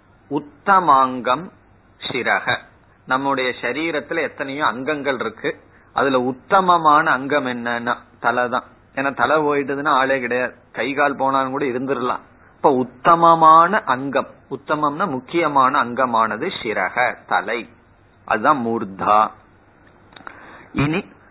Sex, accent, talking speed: male, native, 90 wpm